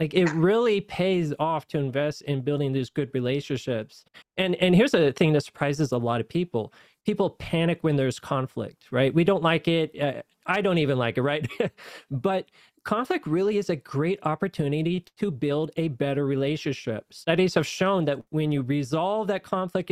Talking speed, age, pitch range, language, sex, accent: 185 wpm, 20-39, 145-180 Hz, English, male, American